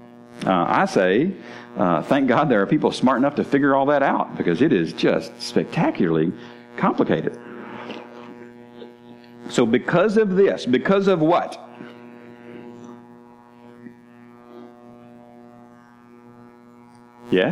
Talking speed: 105 wpm